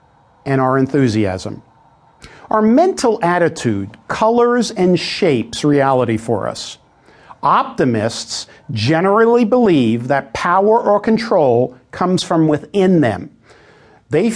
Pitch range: 130-200 Hz